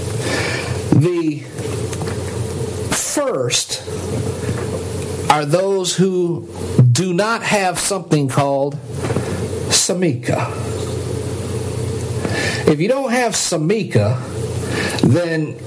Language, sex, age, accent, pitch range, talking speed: English, male, 50-69, American, 120-185 Hz, 65 wpm